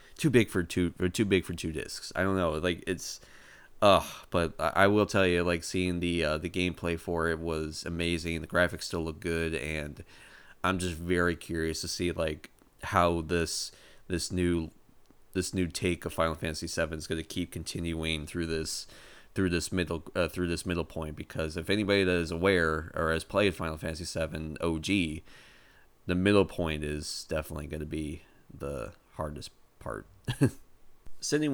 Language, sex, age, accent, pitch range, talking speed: English, male, 20-39, American, 80-90 Hz, 185 wpm